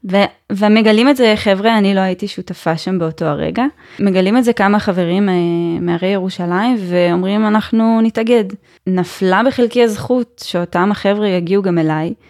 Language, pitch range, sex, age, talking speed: Hebrew, 180-215 Hz, female, 10-29, 150 wpm